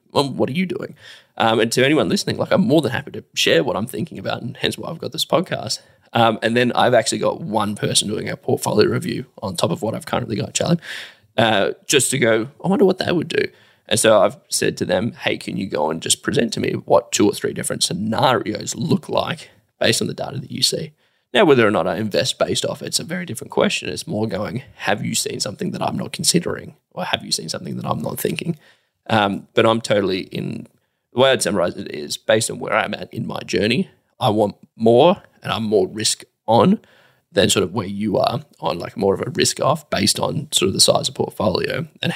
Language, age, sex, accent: English, 10-29, male, Australian